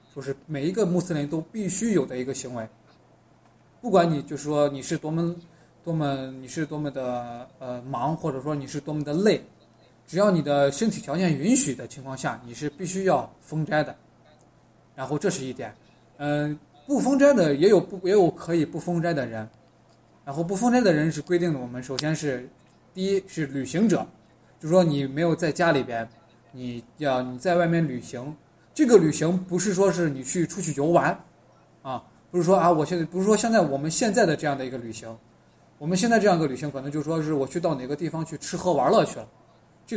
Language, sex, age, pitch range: Chinese, male, 20-39, 135-180 Hz